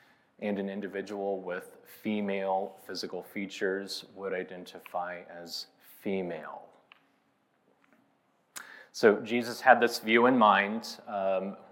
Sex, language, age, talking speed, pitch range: male, English, 30-49, 95 wpm, 95-115 Hz